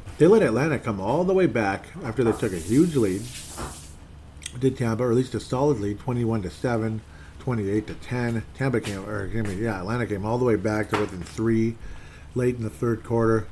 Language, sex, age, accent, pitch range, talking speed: English, male, 40-59, American, 95-115 Hz, 195 wpm